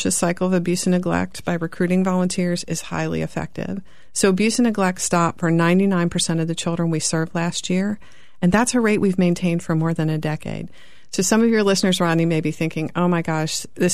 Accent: American